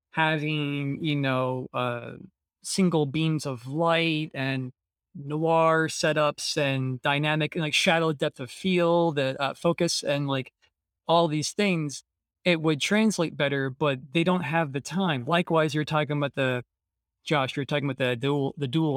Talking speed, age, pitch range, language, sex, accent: 160 wpm, 20-39, 140-175 Hz, English, male, American